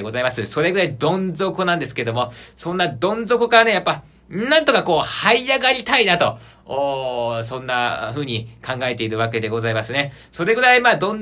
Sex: male